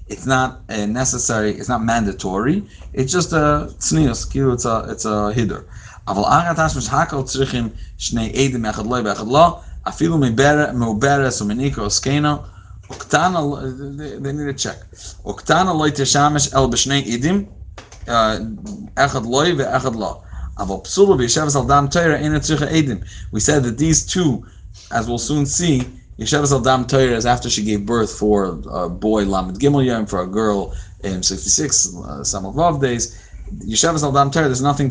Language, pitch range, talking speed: English, 100-140 Hz, 100 wpm